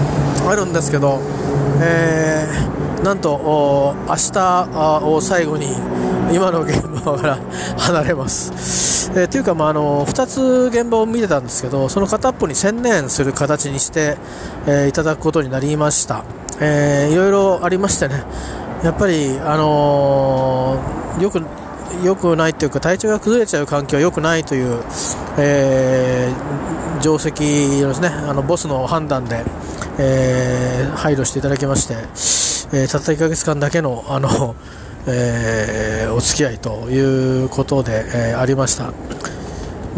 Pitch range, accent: 130-175 Hz, native